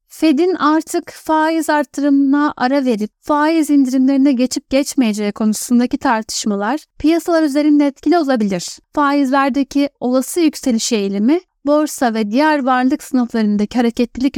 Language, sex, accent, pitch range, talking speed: Turkish, female, native, 245-300 Hz, 110 wpm